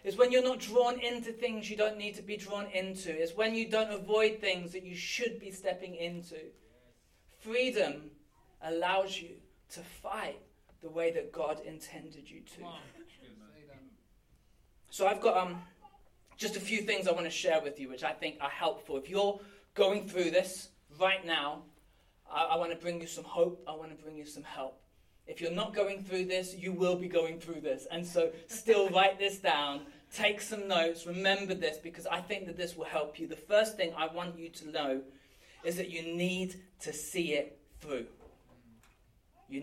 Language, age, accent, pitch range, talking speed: English, 20-39, British, 160-195 Hz, 190 wpm